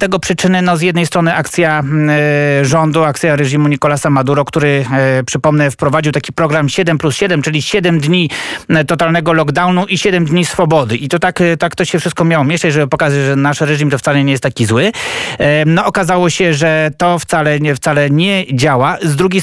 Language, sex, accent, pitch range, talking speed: Polish, male, native, 145-175 Hz, 200 wpm